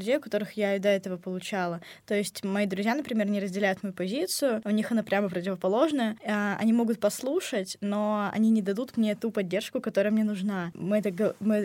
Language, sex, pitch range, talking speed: Russian, female, 185-215 Hz, 185 wpm